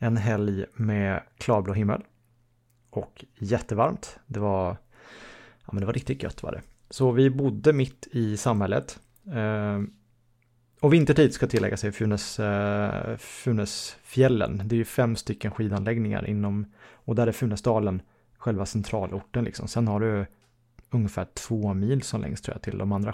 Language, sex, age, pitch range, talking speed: English, male, 30-49, 105-125 Hz, 155 wpm